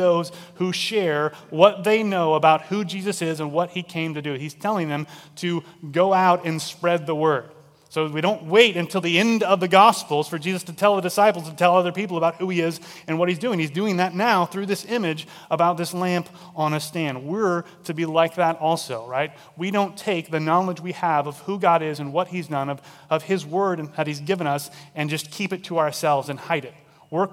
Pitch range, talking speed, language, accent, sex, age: 150-185 Hz, 235 wpm, English, American, male, 30-49